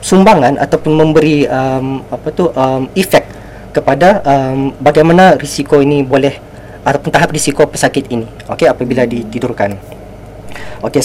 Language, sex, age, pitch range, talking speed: Malay, female, 20-39, 125-150 Hz, 125 wpm